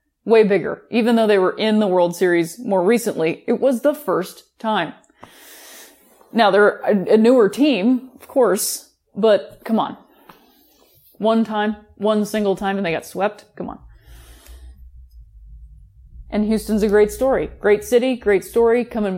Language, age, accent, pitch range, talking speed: English, 30-49, American, 185-235 Hz, 150 wpm